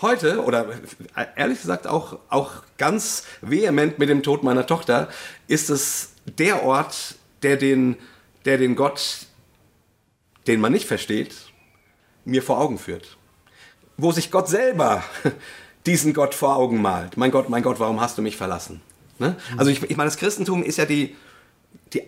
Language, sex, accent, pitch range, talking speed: German, male, German, 115-150 Hz, 160 wpm